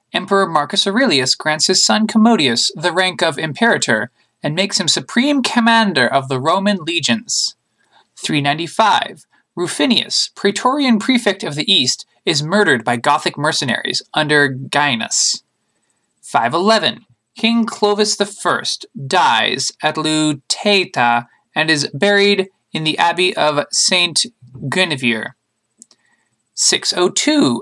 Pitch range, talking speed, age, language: 145-215 Hz, 110 wpm, 20-39, English